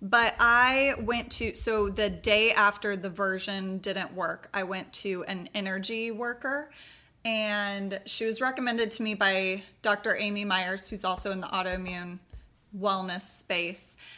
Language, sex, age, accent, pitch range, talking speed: English, female, 20-39, American, 190-220 Hz, 150 wpm